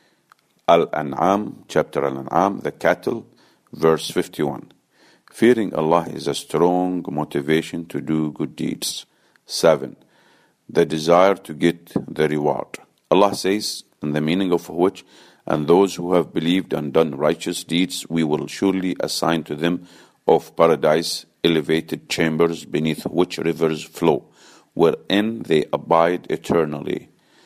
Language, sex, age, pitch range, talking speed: English, male, 50-69, 80-90 Hz, 125 wpm